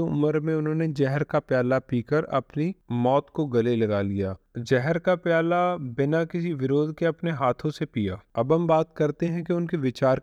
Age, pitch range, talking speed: 30-49, 125-160 Hz, 190 wpm